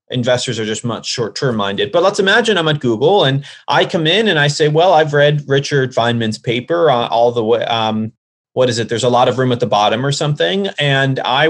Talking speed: 240 wpm